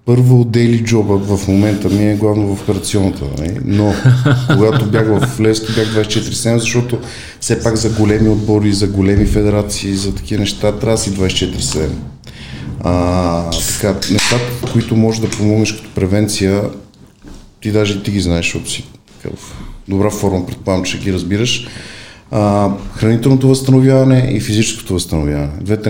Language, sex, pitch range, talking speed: Bulgarian, male, 95-110 Hz, 135 wpm